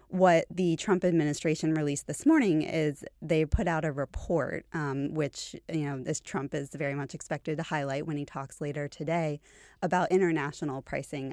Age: 20-39